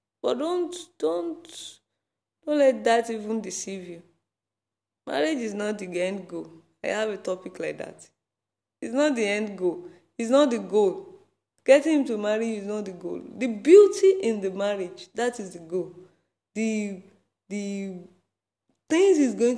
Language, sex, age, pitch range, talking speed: English, female, 20-39, 165-225 Hz, 160 wpm